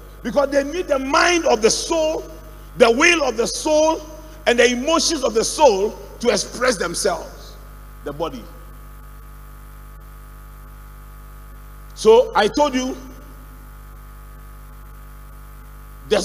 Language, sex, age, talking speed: English, male, 50-69, 105 wpm